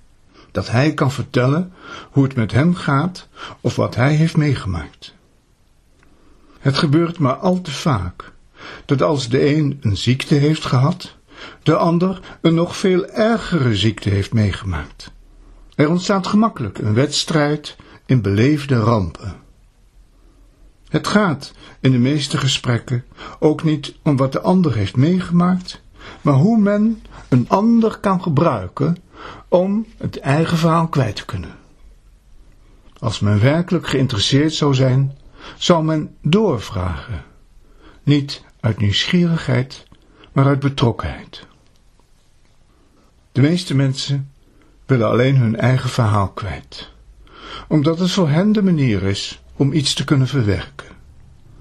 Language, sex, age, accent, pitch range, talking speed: Dutch, male, 60-79, Dutch, 115-165 Hz, 125 wpm